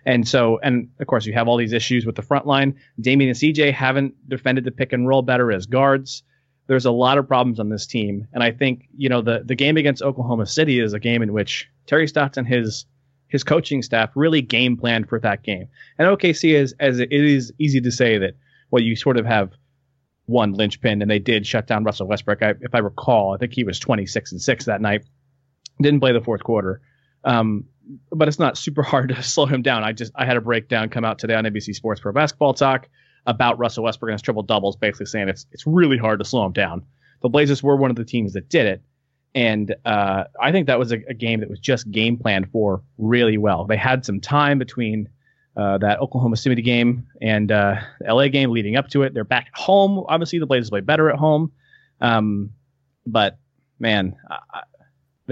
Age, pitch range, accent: 30-49, 110-135 Hz, American